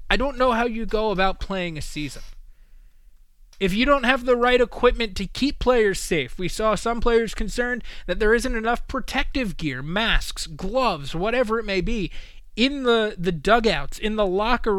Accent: American